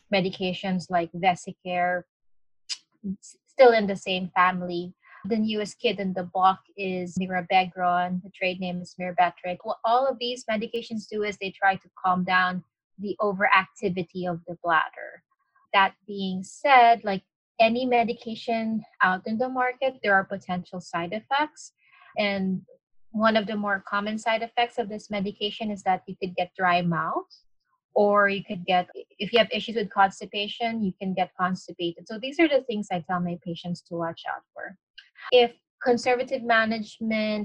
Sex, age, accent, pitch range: female, 20-39, Filipino, 185-225 Hz